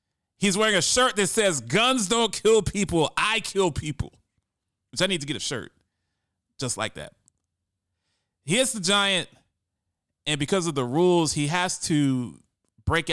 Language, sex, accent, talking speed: English, male, American, 165 wpm